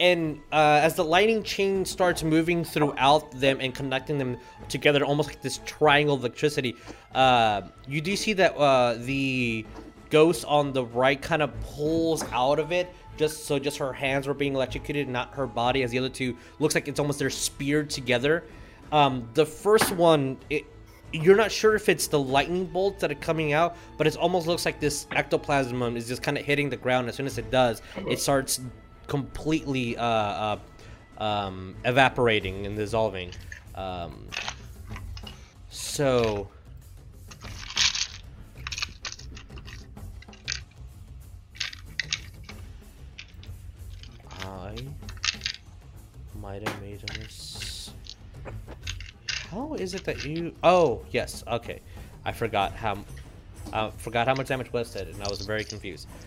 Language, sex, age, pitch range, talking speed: English, male, 20-39, 100-145 Hz, 140 wpm